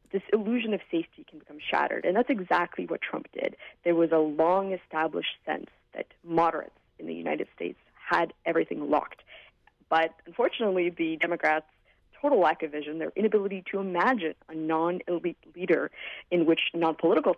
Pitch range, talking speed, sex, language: 160-200 Hz, 155 wpm, female, English